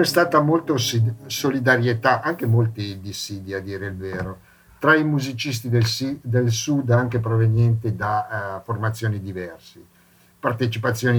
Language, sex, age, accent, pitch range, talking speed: Italian, male, 50-69, native, 105-130 Hz, 125 wpm